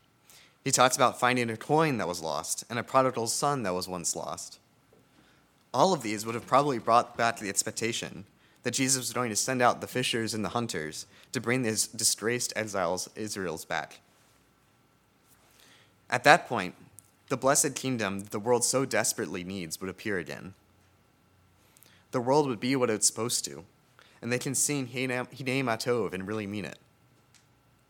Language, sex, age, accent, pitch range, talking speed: English, male, 30-49, American, 105-130 Hz, 170 wpm